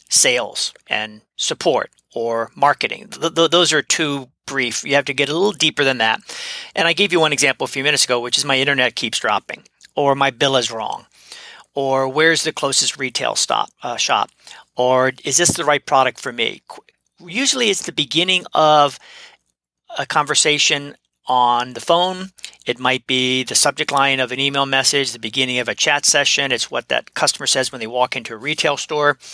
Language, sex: English, male